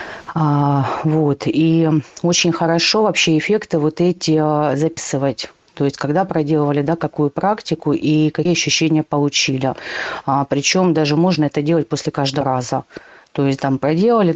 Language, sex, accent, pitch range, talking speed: Russian, female, native, 145-170 Hz, 135 wpm